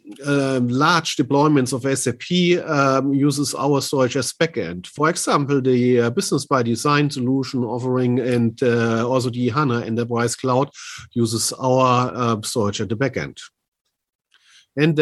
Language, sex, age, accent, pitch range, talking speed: English, male, 50-69, German, 115-140 Hz, 140 wpm